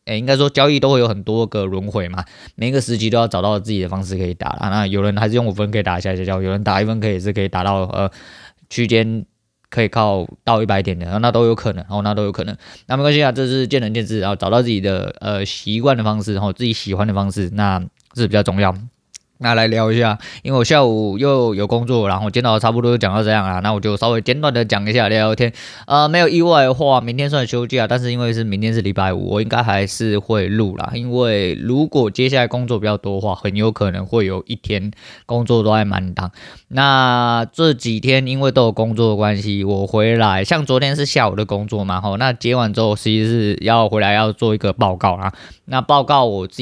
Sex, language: male, Chinese